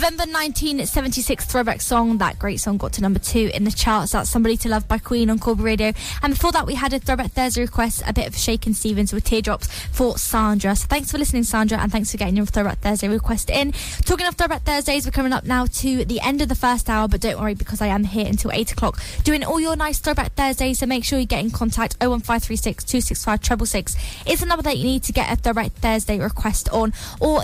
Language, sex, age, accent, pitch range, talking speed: English, female, 10-29, British, 220-275 Hz, 240 wpm